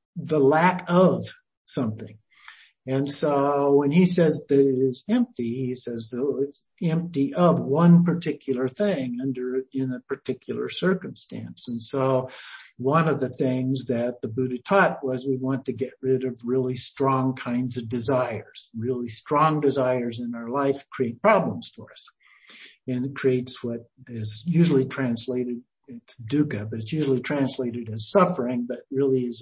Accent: American